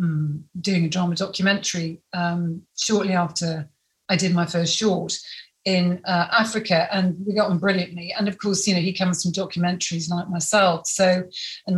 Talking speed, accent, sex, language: 170 wpm, British, female, English